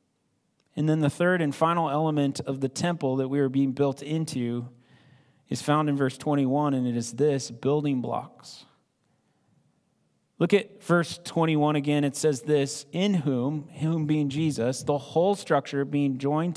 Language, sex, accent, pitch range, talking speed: English, male, American, 140-180 Hz, 165 wpm